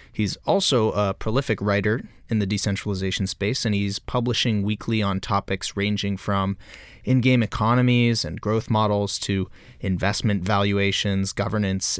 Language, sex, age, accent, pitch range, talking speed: English, male, 30-49, American, 95-110 Hz, 130 wpm